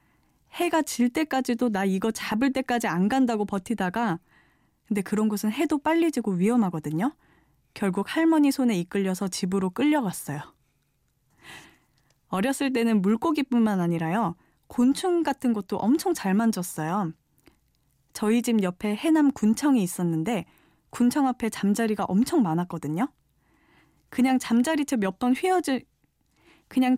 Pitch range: 185-260 Hz